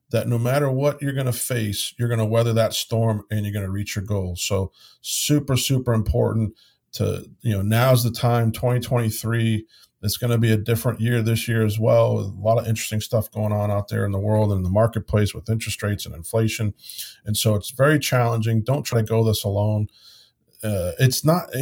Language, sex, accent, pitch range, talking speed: English, male, American, 110-145 Hz, 220 wpm